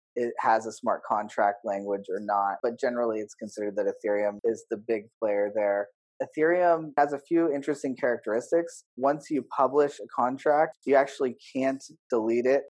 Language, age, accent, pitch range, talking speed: English, 30-49, American, 115-135 Hz, 165 wpm